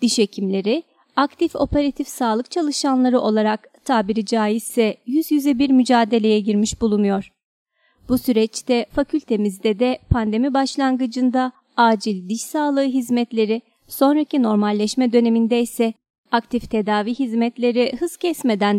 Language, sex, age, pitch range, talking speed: Turkish, female, 30-49, 215-270 Hz, 110 wpm